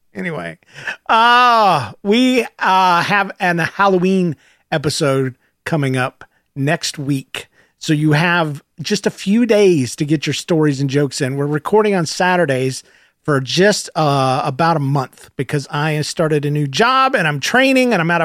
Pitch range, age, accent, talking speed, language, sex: 145-205 Hz, 40-59, American, 165 wpm, English, male